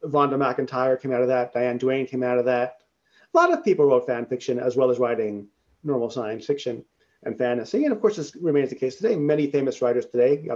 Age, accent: 30-49, American